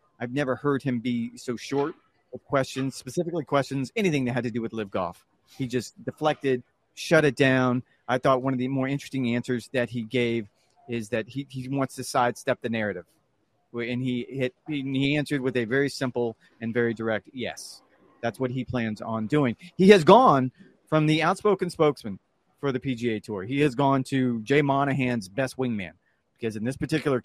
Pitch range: 120-150 Hz